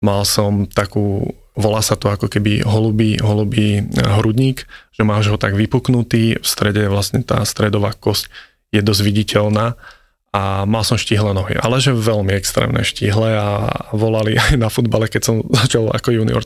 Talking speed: 165 wpm